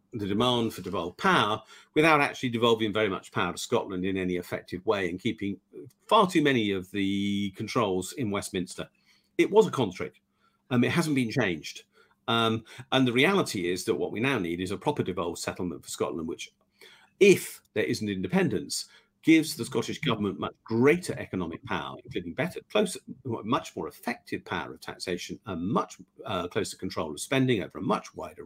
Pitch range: 100-135 Hz